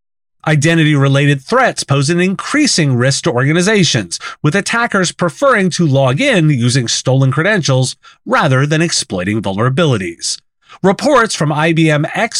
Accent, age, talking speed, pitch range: American, 30-49, 125 wpm, 130-185 Hz